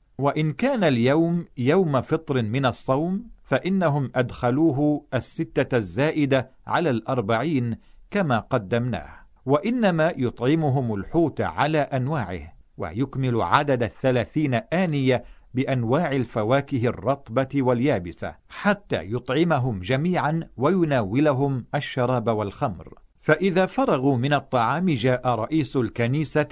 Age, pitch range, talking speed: 50-69, 120-155 Hz, 95 wpm